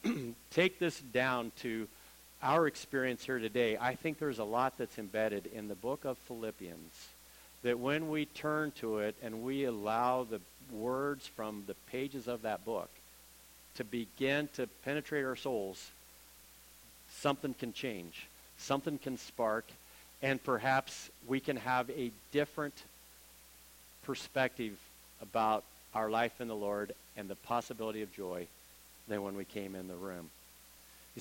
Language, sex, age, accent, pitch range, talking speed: English, male, 50-69, American, 105-140 Hz, 145 wpm